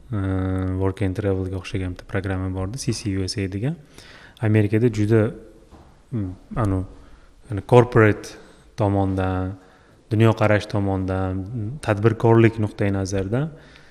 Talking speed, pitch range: 105 wpm, 100-120 Hz